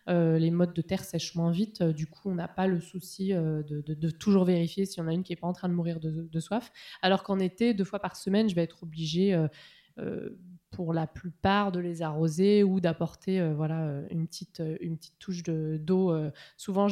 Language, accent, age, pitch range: French, French, 20-39, 170-205 Hz